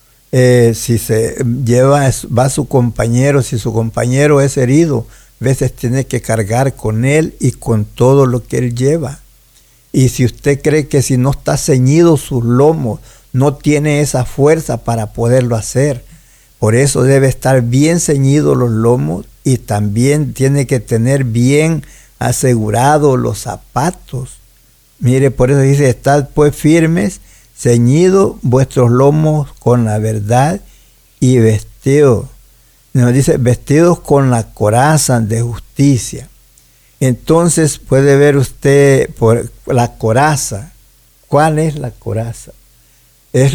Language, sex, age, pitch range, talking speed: Spanish, male, 60-79, 115-140 Hz, 130 wpm